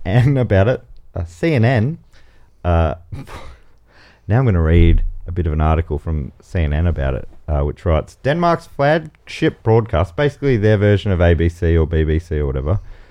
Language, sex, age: English, male, 30-49